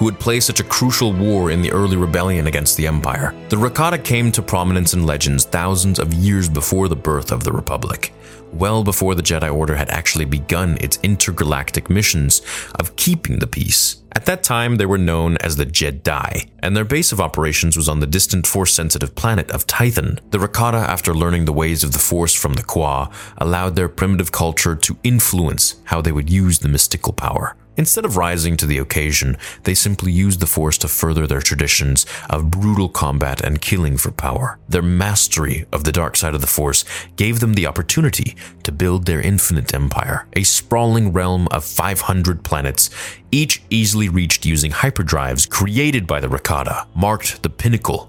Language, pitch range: English, 75-100 Hz